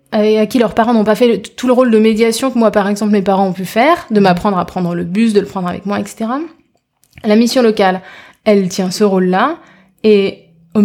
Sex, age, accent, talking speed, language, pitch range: female, 20-39, French, 240 wpm, French, 195-240 Hz